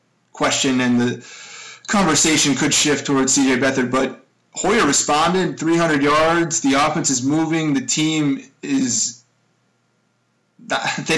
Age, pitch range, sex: 20-39, 125-155 Hz, male